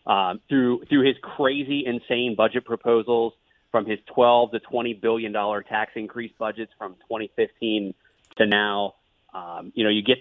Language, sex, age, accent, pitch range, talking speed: English, male, 30-49, American, 110-125 Hz, 155 wpm